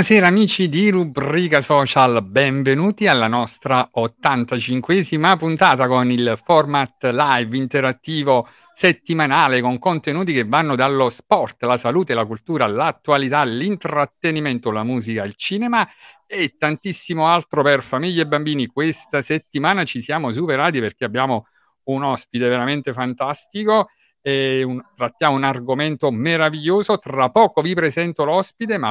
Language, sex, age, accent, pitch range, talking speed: Italian, male, 50-69, native, 130-175 Hz, 130 wpm